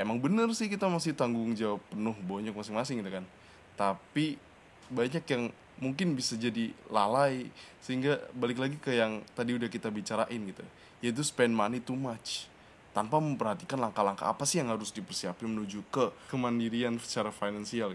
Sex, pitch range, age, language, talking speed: male, 105-135 Hz, 20-39, Indonesian, 155 wpm